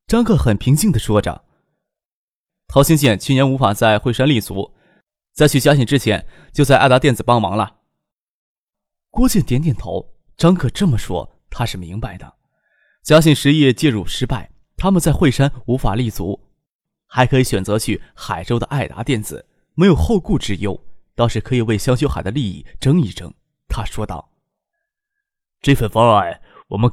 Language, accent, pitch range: Chinese, native, 110-150 Hz